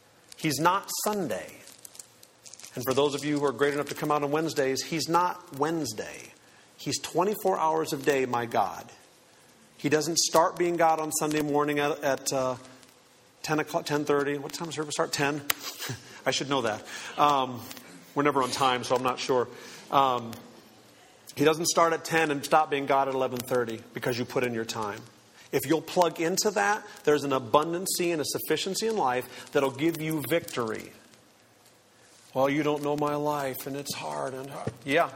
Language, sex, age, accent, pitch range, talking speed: English, male, 40-59, American, 130-160 Hz, 185 wpm